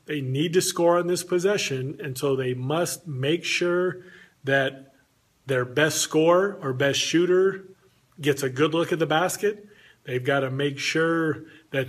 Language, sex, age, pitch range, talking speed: English, male, 40-59, 135-170 Hz, 165 wpm